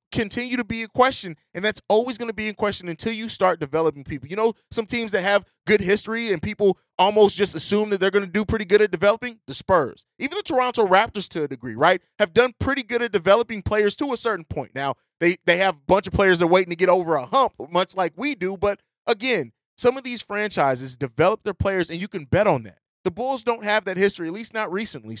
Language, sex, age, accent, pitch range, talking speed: English, male, 20-39, American, 170-230 Hz, 250 wpm